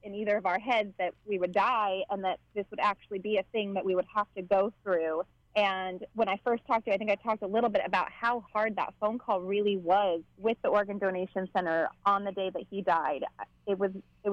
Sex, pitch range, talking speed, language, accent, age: female, 190-230 Hz, 245 wpm, English, American, 30-49